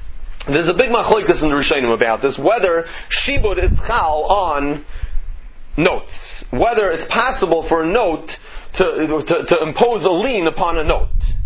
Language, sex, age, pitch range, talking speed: English, male, 30-49, 140-200 Hz, 155 wpm